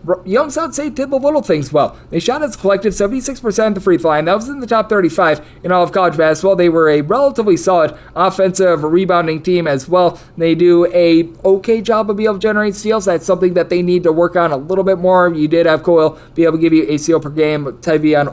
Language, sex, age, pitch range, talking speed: English, male, 20-39, 150-175 Hz, 250 wpm